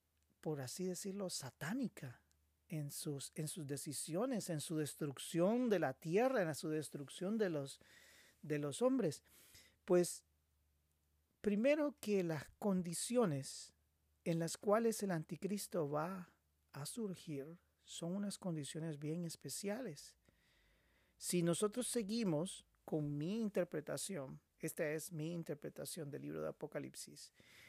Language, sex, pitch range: Spanish, male, 145-195 Hz